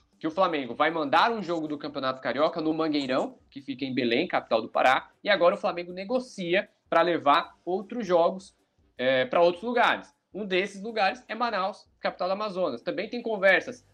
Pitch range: 140-210 Hz